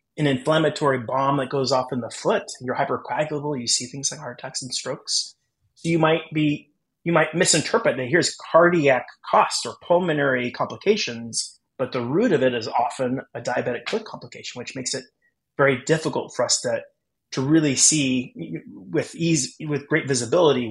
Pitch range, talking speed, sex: 130-155 Hz, 175 wpm, male